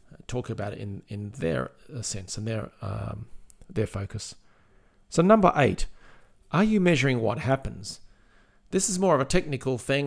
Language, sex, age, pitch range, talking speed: English, male, 40-59, 105-135 Hz, 160 wpm